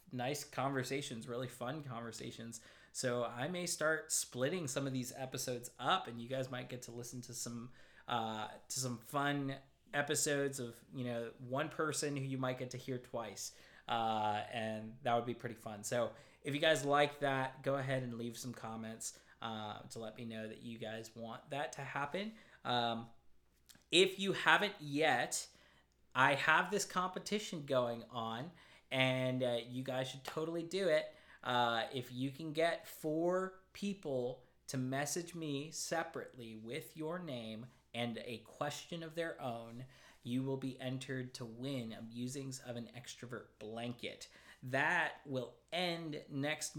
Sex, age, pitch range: male, 20-39, 120-150 Hz